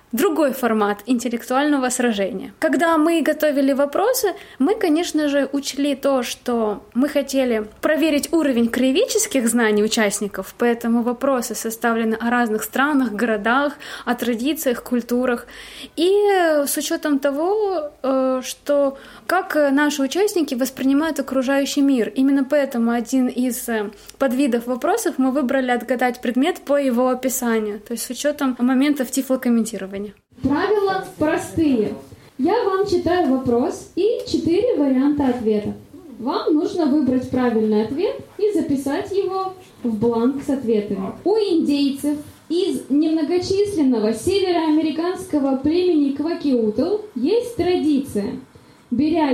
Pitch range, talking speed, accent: 245-320 Hz, 110 wpm, native